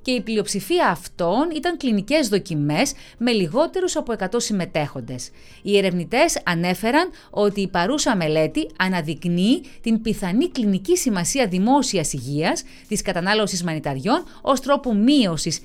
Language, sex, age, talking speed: English, female, 30-49, 125 wpm